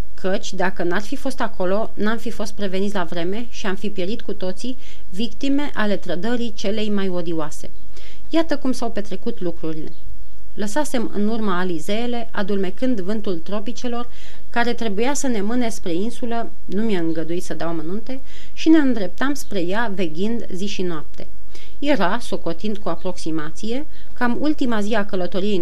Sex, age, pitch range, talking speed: female, 30-49, 185-245 Hz, 155 wpm